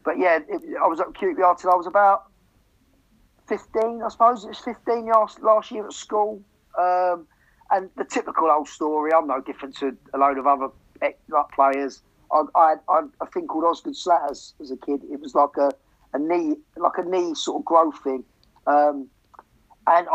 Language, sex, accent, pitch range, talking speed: English, male, British, 140-190 Hz, 190 wpm